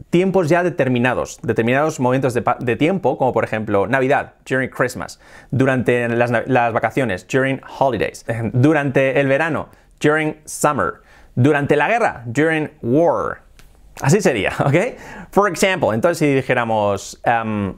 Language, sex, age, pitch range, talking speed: English, male, 30-49, 120-160 Hz, 130 wpm